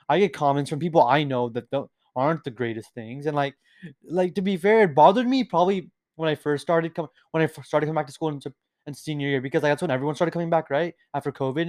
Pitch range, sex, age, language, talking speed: 140-185 Hz, male, 20-39, English, 245 wpm